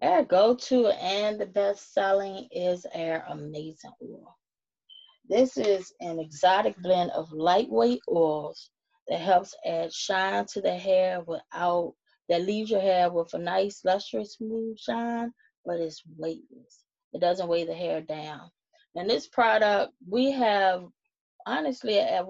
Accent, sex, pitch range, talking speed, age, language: American, female, 165-205 Hz, 135 wpm, 20-39, English